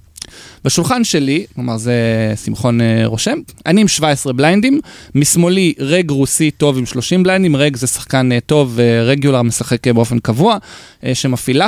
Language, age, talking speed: English, 20-39, 125 wpm